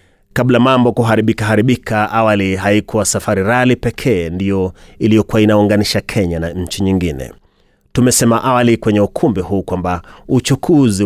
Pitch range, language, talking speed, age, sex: 95-125 Hz, Swahili, 125 wpm, 30-49, male